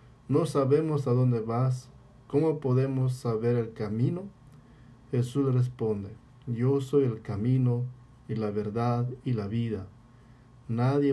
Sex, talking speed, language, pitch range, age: male, 125 wpm, English, 120-135 Hz, 50-69